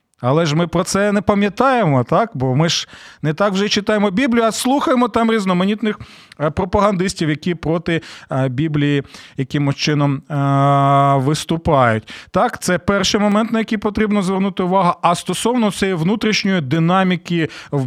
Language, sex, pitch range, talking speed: Ukrainian, male, 150-205 Hz, 140 wpm